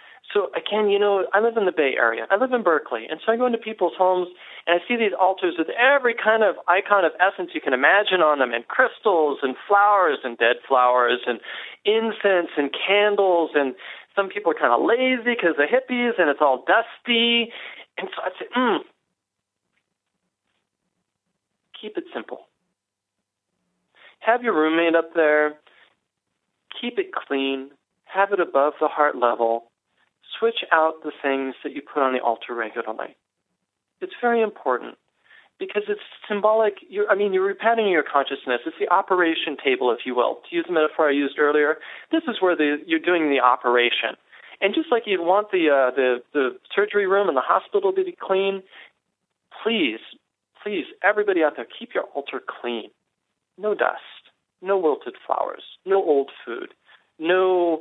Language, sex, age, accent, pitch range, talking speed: English, male, 40-59, American, 150-220 Hz, 170 wpm